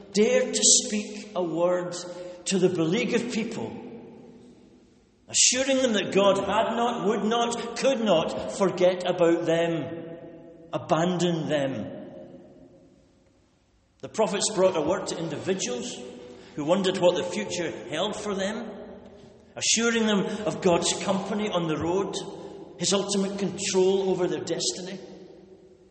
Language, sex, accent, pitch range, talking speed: English, male, British, 160-205 Hz, 125 wpm